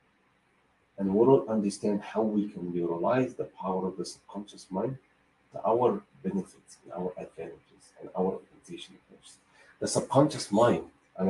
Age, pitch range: 40-59, 95-115 Hz